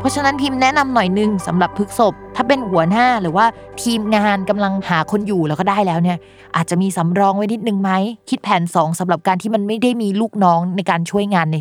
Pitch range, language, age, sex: 170-220 Hz, Thai, 20-39, female